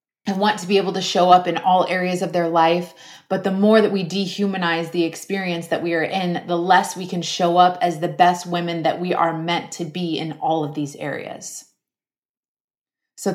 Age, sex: 30-49, female